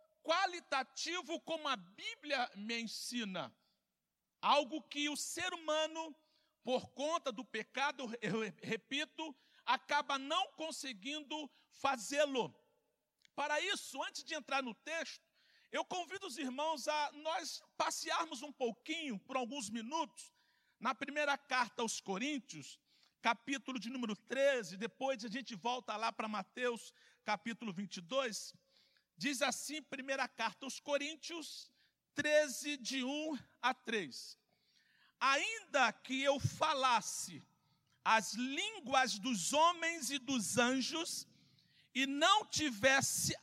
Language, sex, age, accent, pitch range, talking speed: Portuguese, male, 50-69, Brazilian, 245-310 Hz, 115 wpm